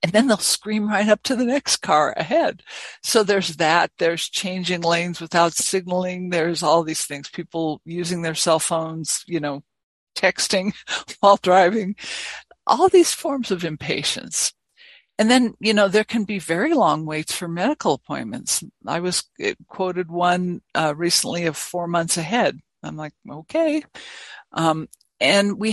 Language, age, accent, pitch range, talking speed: English, 60-79, American, 160-205 Hz, 155 wpm